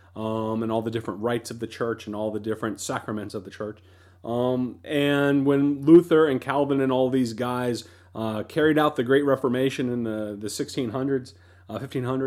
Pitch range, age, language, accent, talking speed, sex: 110-135 Hz, 40-59, English, American, 185 wpm, male